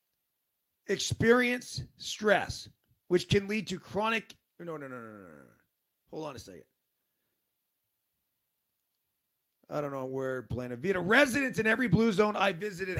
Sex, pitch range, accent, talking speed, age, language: male, 170-230 Hz, American, 140 wpm, 40-59, English